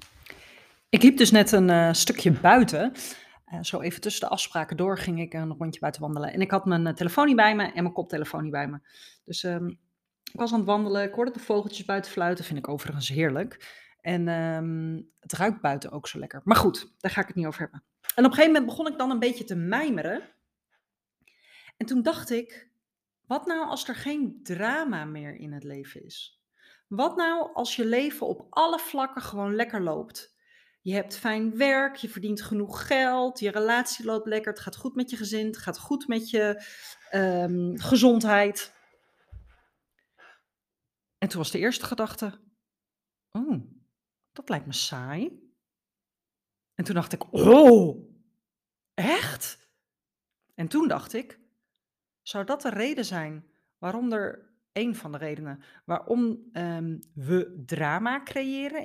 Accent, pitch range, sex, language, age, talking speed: Dutch, 170-250 Hz, female, Dutch, 30-49, 170 wpm